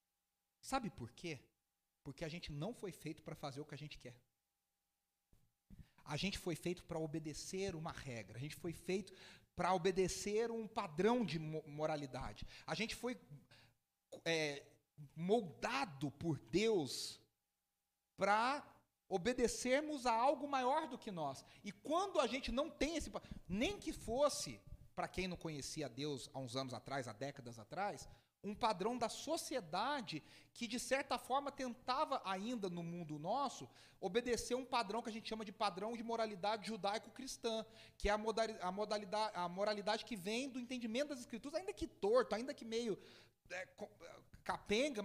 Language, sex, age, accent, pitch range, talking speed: Portuguese, male, 40-59, Brazilian, 155-235 Hz, 155 wpm